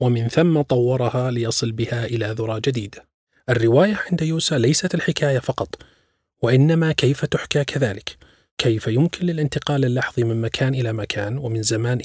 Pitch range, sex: 115-145 Hz, male